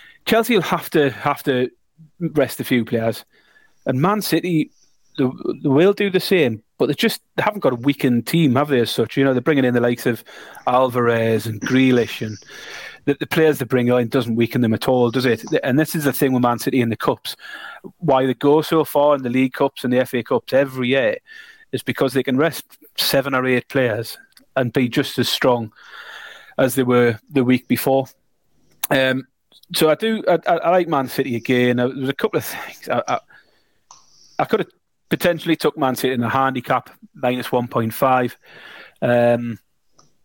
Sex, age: male, 30-49